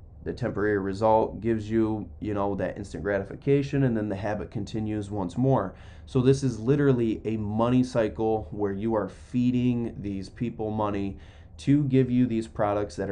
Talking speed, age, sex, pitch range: 170 wpm, 20-39, male, 95-115 Hz